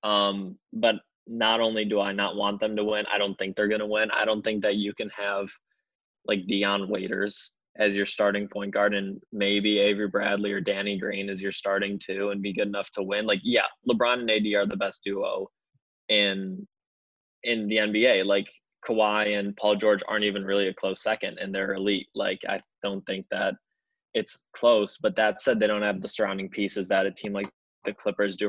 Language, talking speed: English, 210 wpm